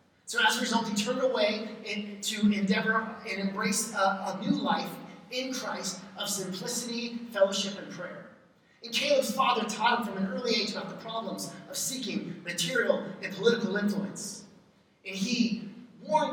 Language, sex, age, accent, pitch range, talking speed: English, male, 30-49, American, 195-230 Hz, 160 wpm